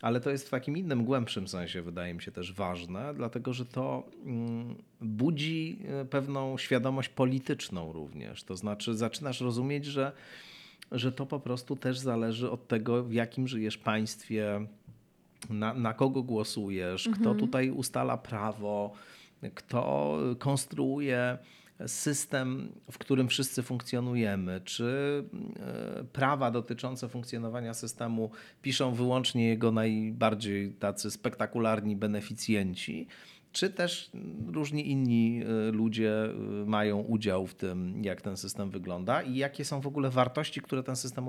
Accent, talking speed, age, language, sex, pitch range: native, 125 wpm, 40-59, Polish, male, 110-135 Hz